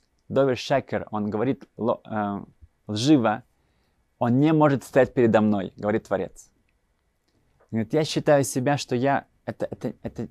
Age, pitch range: 20-39, 110-135 Hz